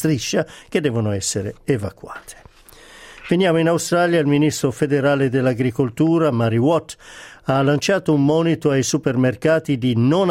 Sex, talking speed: male, 130 wpm